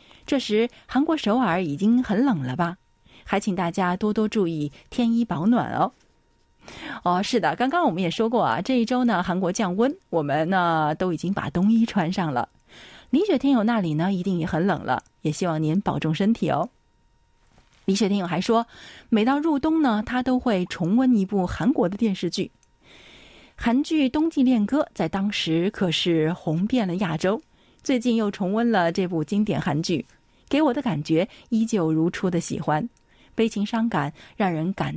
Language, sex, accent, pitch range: Chinese, female, native, 170-235 Hz